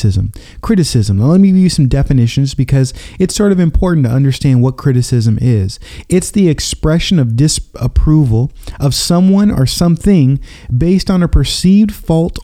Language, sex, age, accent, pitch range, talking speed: English, male, 30-49, American, 115-160 Hz, 155 wpm